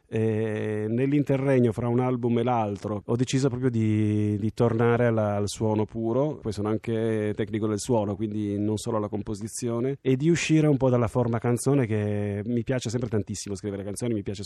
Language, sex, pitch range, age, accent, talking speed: Italian, male, 105-125 Hz, 30-49, native, 185 wpm